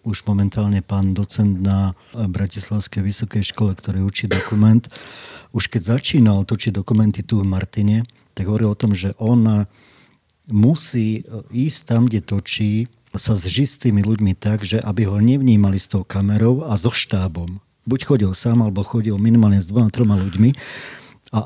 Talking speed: 155 wpm